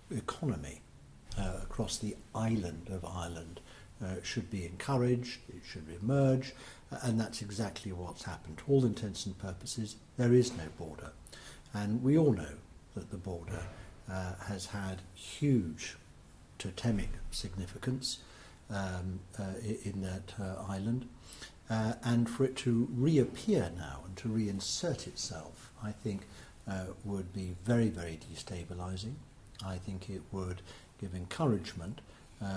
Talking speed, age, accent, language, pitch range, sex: 135 wpm, 60-79, British, English, 90-115 Hz, male